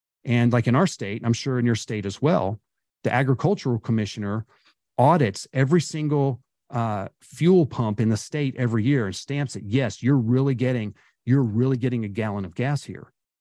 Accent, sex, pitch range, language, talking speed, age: American, male, 110-135 Hz, English, 185 wpm, 40-59